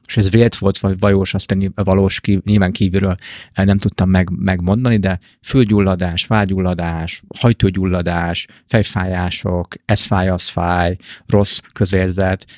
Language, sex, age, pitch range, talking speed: Hungarian, male, 30-49, 90-105 Hz, 125 wpm